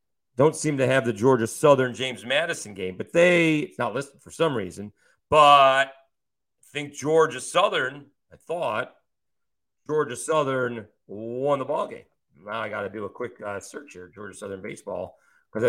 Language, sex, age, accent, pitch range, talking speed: English, male, 40-59, American, 105-140 Hz, 170 wpm